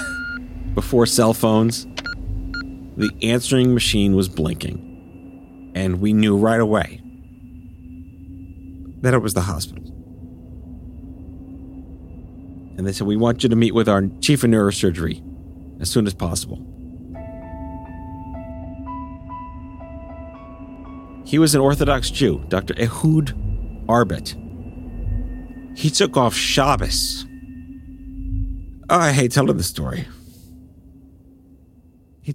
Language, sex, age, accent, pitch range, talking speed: English, male, 40-59, American, 90-125 Hz, 100 wpm